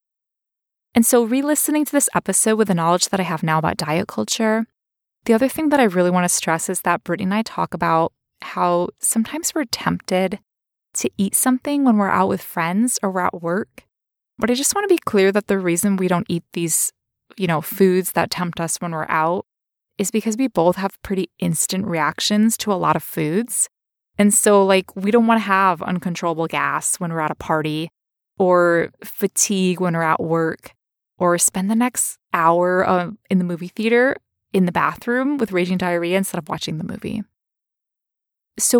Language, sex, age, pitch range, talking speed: English, female, 20-39, 175-235 Hz, 195 wpm